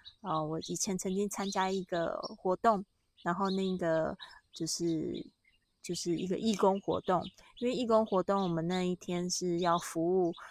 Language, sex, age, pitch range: Chinese, female, 20-39, 175-205 Hz